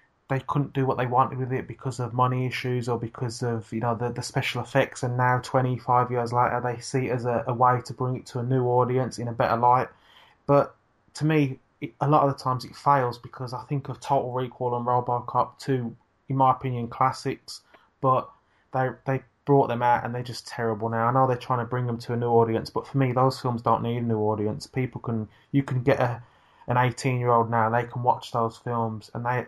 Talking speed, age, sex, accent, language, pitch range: 240 wpm, 20-39, male, British, English, 115-130 Hz